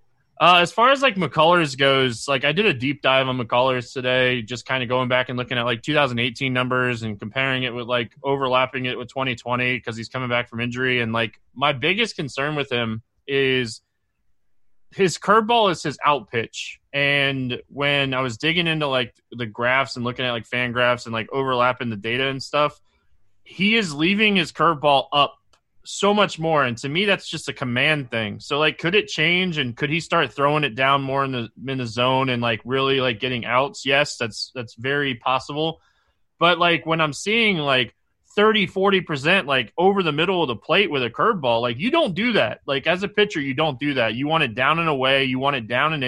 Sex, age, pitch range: male, 20-39, 125-155 Hz